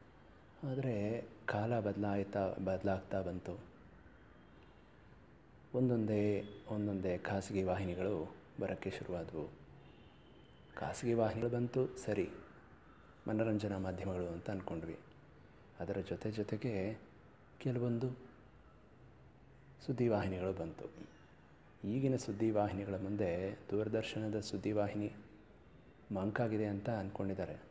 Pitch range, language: 95-110 Hz, Kannada